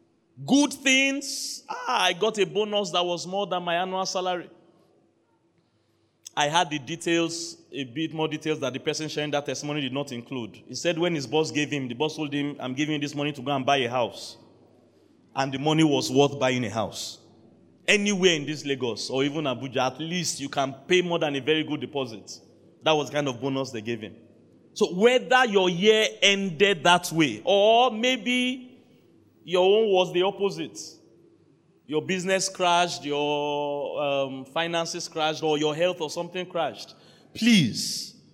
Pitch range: 140-195 Hz